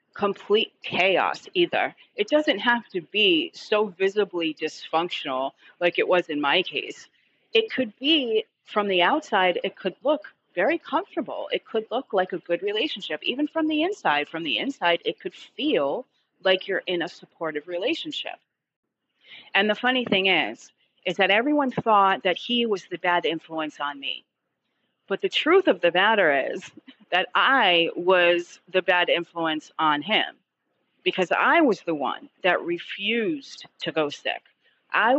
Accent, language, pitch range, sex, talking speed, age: American, English, 170-245 Hz, female, 160 wpm, 30-49